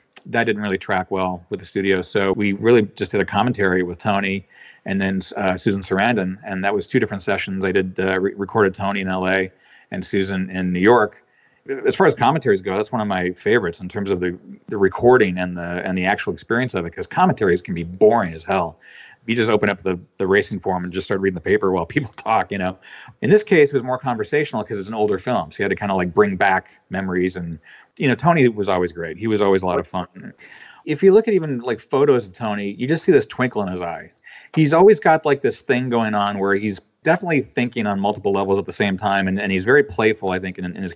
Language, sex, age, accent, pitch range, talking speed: English, male, 40-59, American, 95-120 Hz, 255 wpm